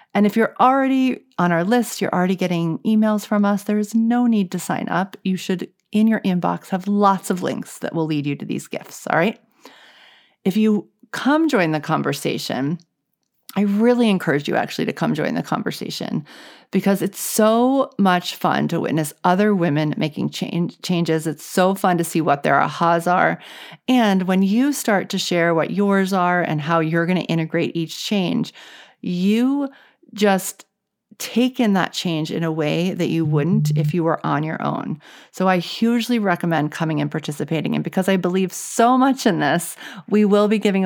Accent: American